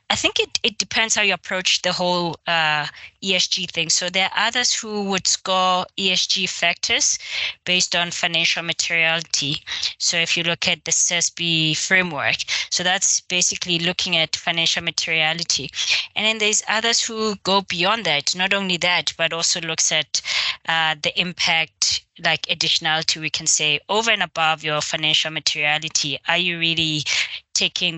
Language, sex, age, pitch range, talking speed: English, female, 20-39, 160-185 Hz, 160 wpm